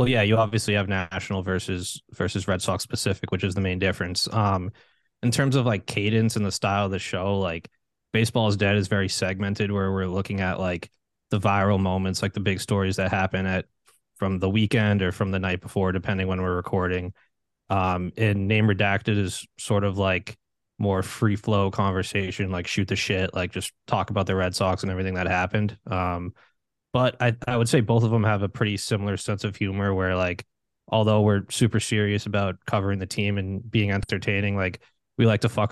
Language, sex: English, male